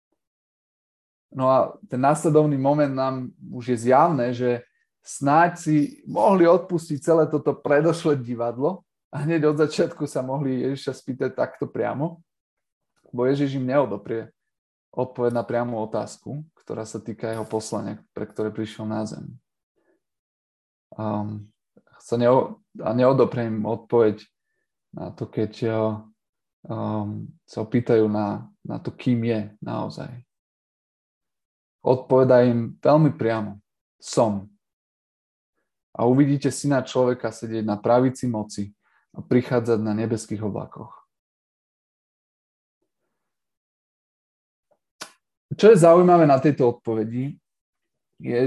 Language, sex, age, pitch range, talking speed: Slovak, male, 20-39, 110-145 Hz, 110 wpm